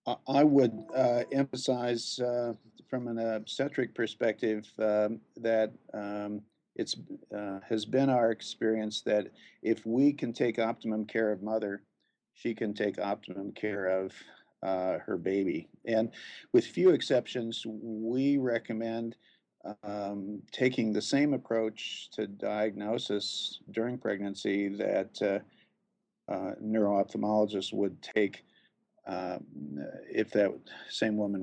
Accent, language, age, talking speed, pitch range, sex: American, English, 50-69, 120 wpm, 100-115 Hz, male